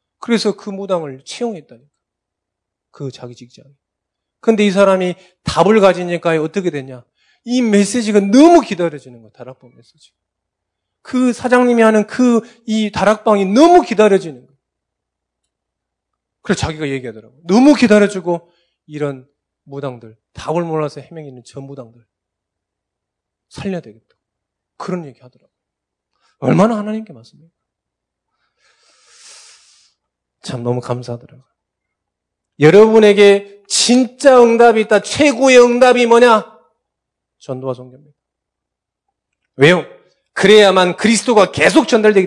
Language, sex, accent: Korean, male, native